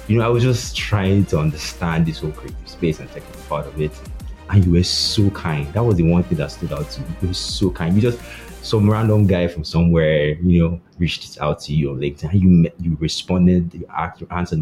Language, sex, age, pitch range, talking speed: English, male, 30-49, 80-95 Hz, 235 wpm